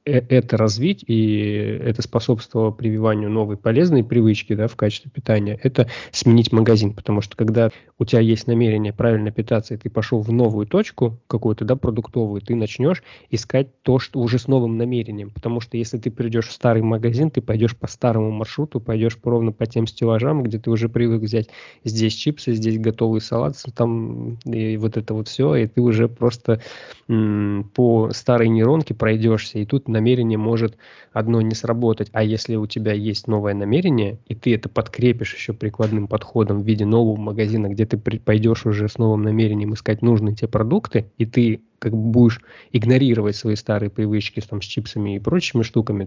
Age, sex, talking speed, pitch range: 20-39, male, 180 wpm, 110-120 Hz